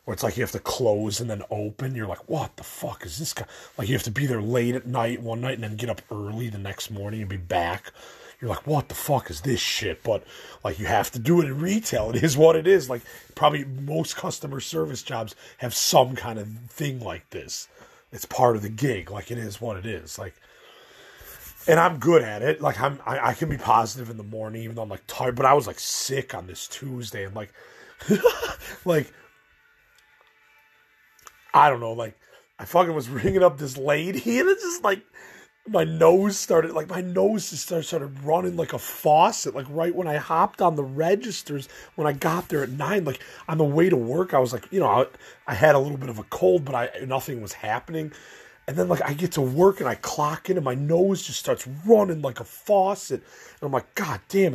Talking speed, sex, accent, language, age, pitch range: 230 wpm, male, American, English, 30-49, 115-165 Hz